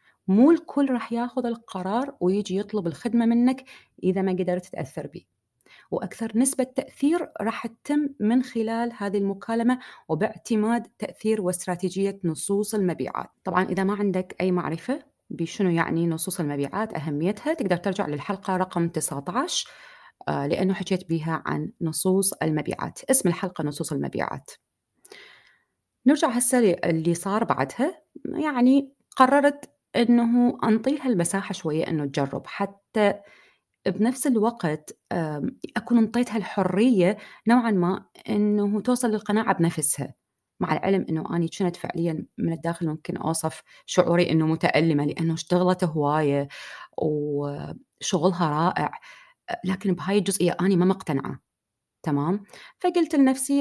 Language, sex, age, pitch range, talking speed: Arabic, female, 30-49, 170-235 Hz, 120 wpm